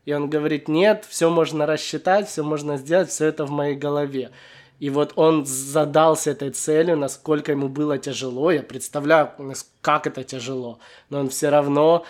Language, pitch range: Russian, 145-165 Hz